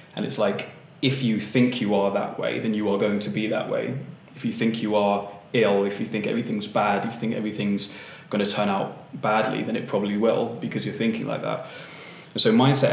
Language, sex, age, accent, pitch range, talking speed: English, male, 20-39, British, 100-115 Hz, 230 wpm